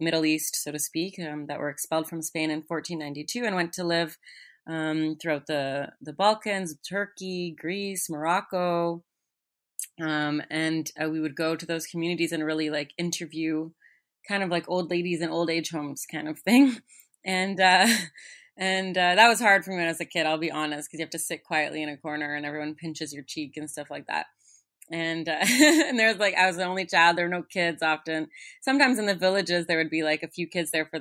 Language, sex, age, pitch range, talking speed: English, female, 30-49, 155-180 Hz, 215 wpm